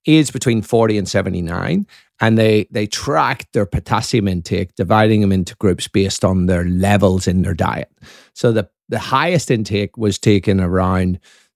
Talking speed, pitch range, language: 160 wpm, 95-120 Hz, English